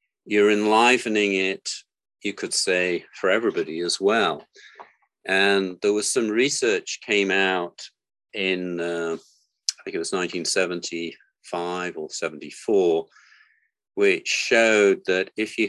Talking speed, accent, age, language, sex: 120 wpm, British, 40-59, English, male